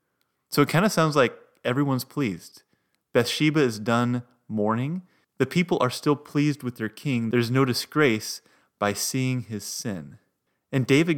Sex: male